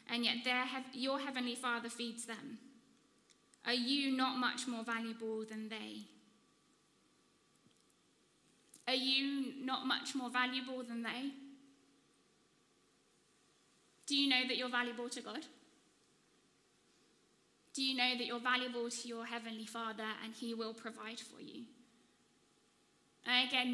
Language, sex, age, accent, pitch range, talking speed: English, female, 10-29, British, 230-260 Hz, 125 wpm